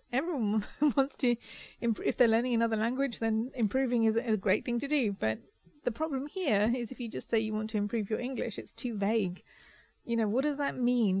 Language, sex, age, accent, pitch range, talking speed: English, female, 40-59, British, 210-265 Hz, 220 wpm